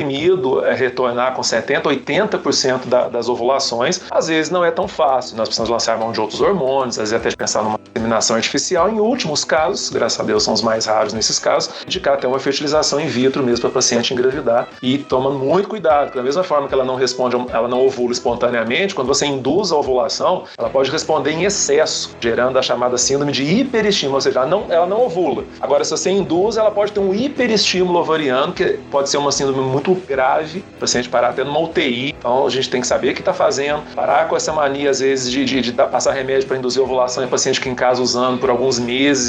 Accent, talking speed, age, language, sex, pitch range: Brazilian, 225 wpm, 40-59, Portuguese, male, 125-155 Hz